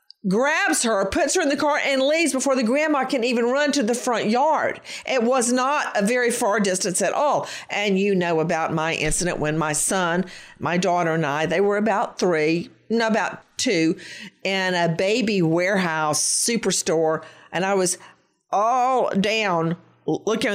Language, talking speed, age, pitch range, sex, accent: English, 170 wpm, 50-69, 170-225 Hz, female, American